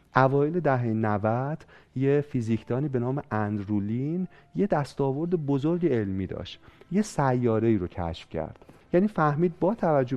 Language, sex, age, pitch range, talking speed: Persian, male, 30-49, 110-160 Hz, 135 wpm